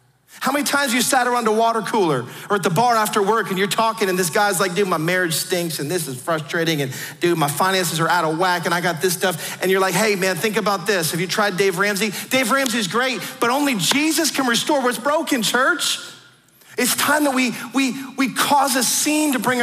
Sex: male